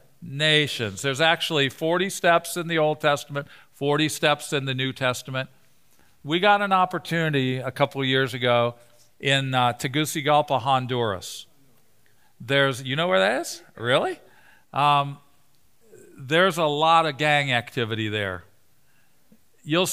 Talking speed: 130 wpm